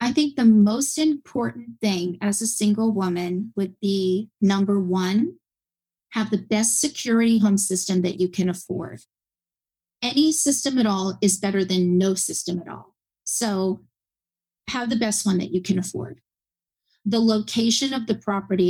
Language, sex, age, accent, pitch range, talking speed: English, female, 40-59, American, 190-230 Hz, 155 wpm